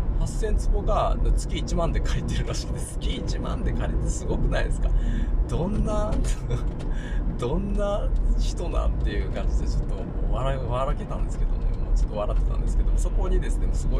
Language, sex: Japanese, male